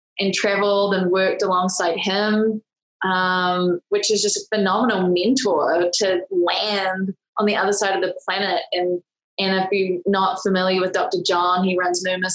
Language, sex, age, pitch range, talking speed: English, female, 20-39, 185-210 Hz, 165 wpm